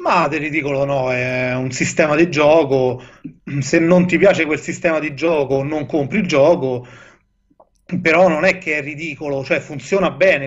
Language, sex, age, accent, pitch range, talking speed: Italian, male, 30-49, native, 150-175 Hz, 170 wpm